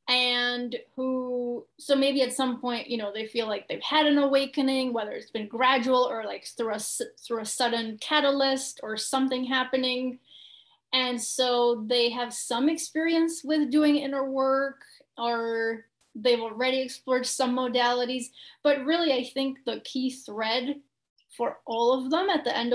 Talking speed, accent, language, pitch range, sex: 160 wpm, American, English, 240-275 Hz, female